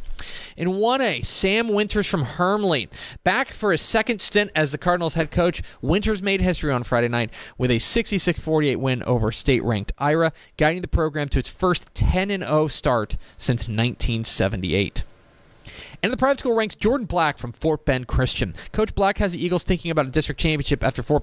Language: English